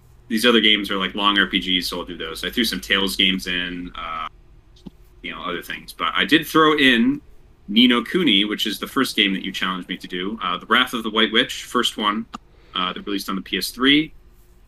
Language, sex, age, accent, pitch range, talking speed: English, male, 30-49, American, 90-120 Hz, 230 wpm